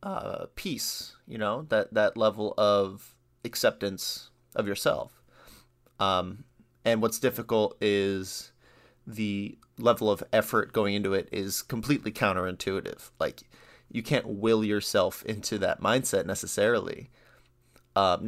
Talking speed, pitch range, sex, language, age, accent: 120 wpm, 105-125 Hz, male, English, 30-49, American